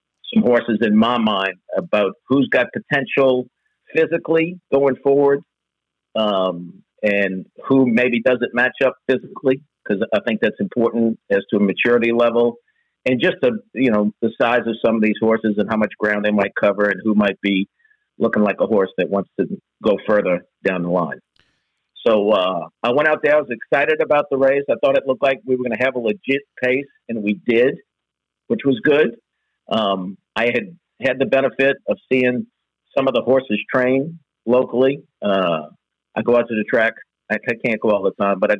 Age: 50-69